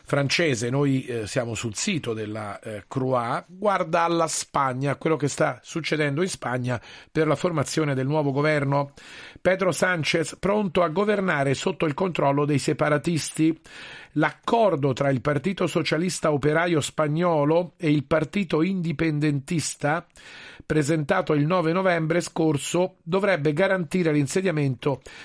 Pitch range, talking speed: 140-170 Hz, 125 wpm